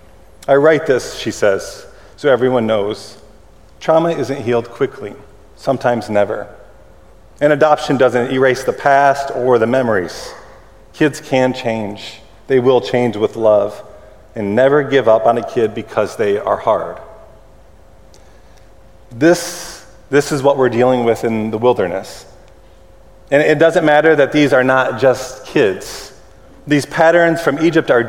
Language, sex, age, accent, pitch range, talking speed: English, male, 30-49, American, 115-145 Hz, 145 wpm